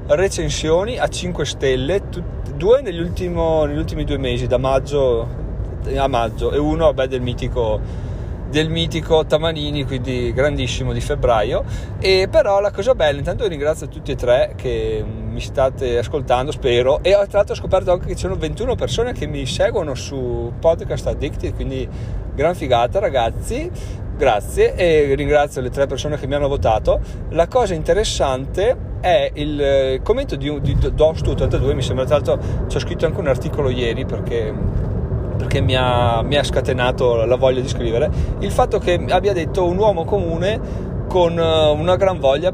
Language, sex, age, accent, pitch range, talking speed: Italian, male, 30-49, native, 125-165 Hz, 165 wpm